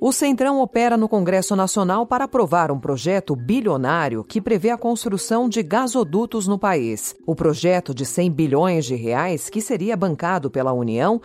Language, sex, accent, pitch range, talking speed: Portuguese, female, Brazilian, 150-225 Hz, 165 wpm